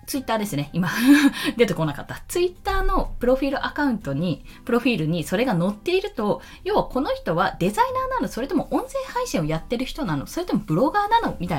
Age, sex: 20-39, female